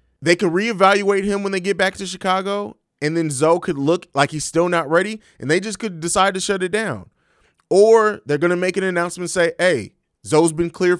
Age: 30-49